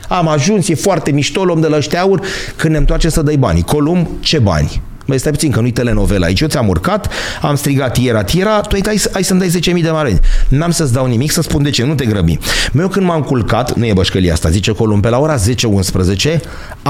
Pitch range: 110-160 Hz